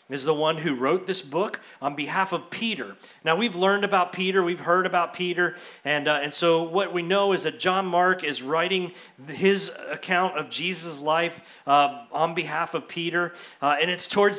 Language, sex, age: English, male, 40-59